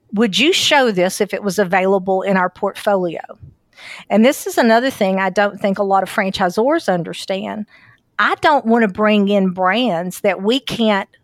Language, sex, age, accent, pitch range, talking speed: English, female, 50-69, American, 190-225 Hz, 180 wpm